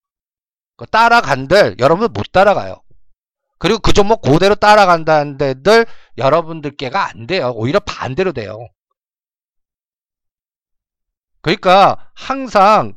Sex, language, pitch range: male, Korean, 140-210 Hz